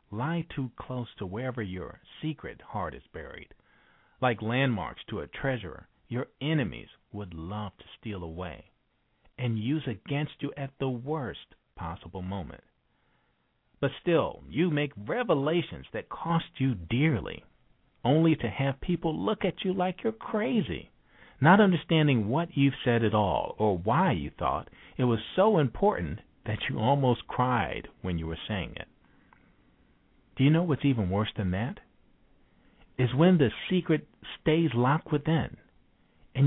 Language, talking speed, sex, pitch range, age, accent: English, 150 wpm, male, 105-155 Hz, 50-69, American